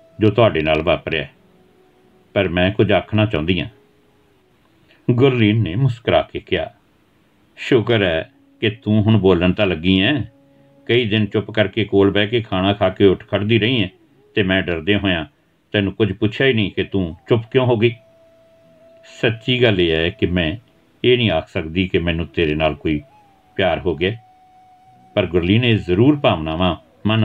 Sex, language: male, Punjabi